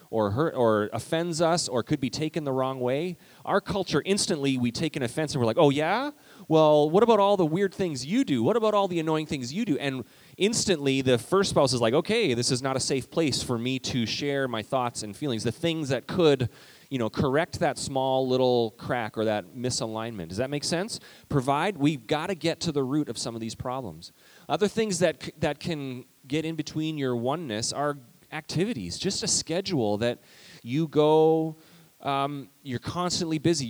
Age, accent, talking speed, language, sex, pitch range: 30-49, American, 205 wpm, English, male, 125-165 Hz